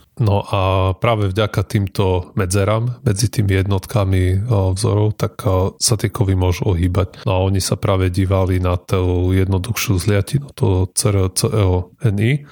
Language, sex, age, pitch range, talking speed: Slovak, male, 30-49, 95-110 Hz, 135 wpm